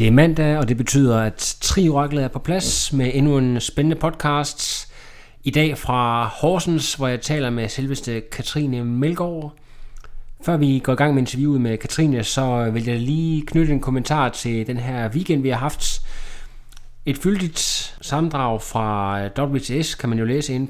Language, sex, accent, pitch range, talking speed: Danish, male, native, 120-150 Hz, 175 wpm